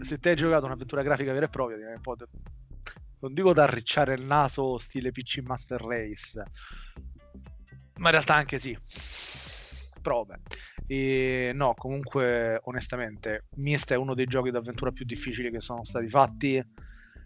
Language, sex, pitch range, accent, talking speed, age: Italian, male, 110-135 Hz, native, 140 wpm, 30-49